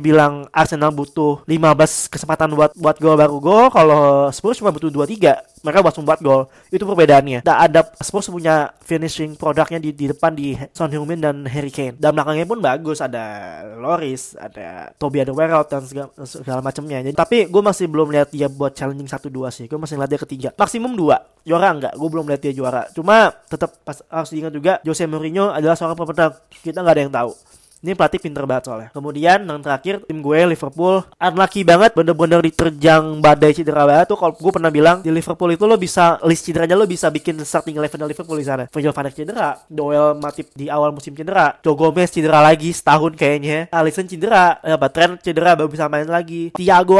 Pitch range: 150-170 Hz